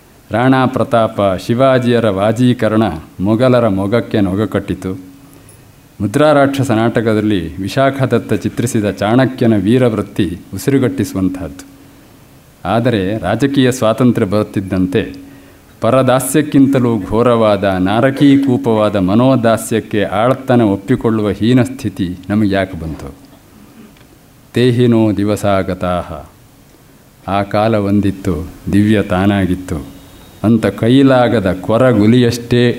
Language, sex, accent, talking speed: Kannada, male, native, 70 wpm